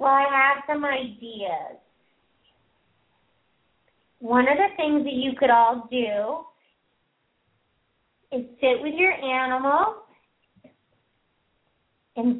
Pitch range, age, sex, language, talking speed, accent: 215-270 Hz, 30-49, female, English, 95 wpm, American